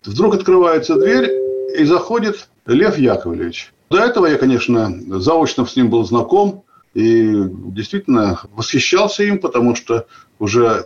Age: 50-69